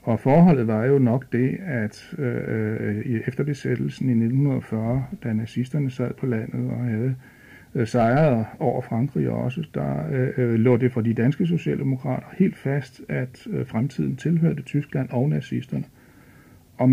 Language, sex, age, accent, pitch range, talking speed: Danish, male, 60-79, native, 115-140 Hz, 150 wpm